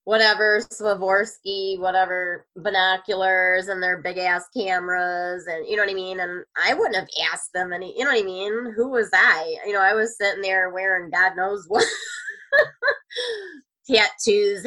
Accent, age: American, 20-39